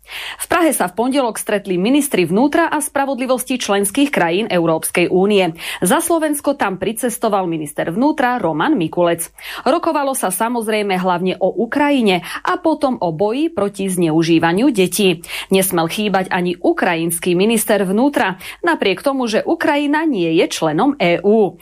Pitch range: 180-280 Hz